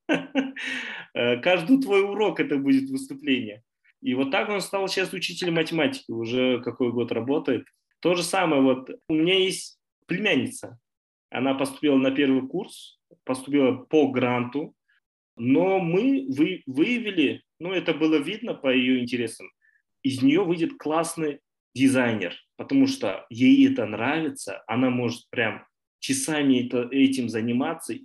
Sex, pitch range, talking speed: male, 125-200 Hz, 130 wpm